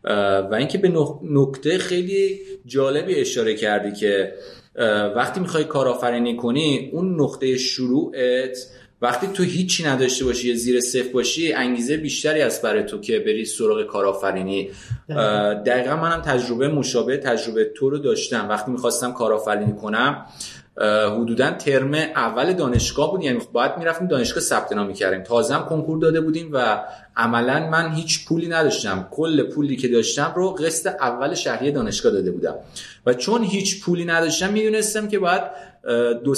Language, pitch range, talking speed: Persian, 125-180 Hz, 145 wpm